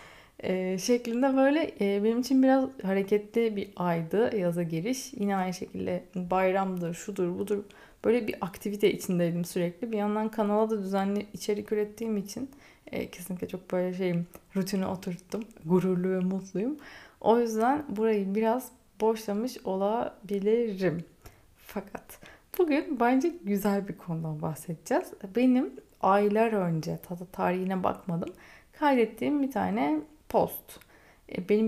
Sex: female